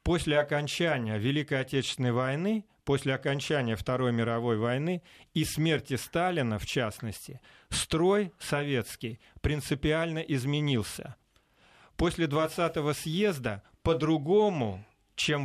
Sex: male